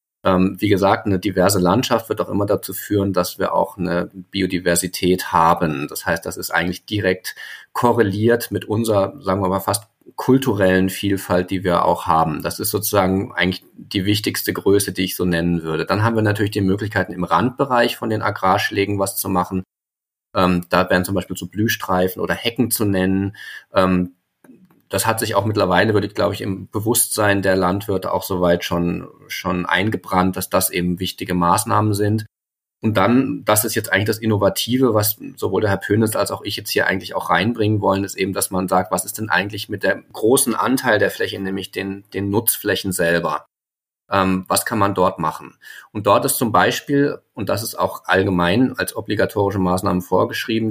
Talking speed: 185 wpm